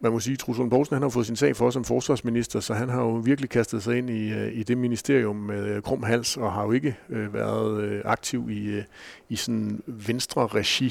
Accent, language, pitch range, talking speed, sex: native, Danish, 105-125 Hz, 210 wpm, male